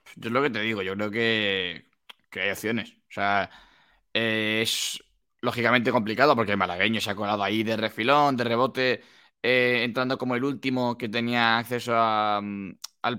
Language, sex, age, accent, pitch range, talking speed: Spanish, male, 20-39, Spanish, 115-135 Hz, 175 wpm